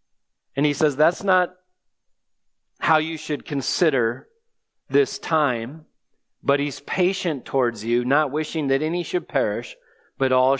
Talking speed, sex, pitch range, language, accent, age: 135 wpm, male, 140-180 Hz, English, American, 40-59